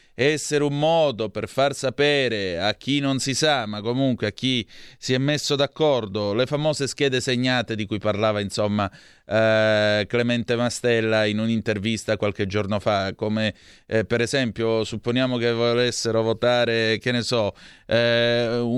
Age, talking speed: 30-49, 150 wpm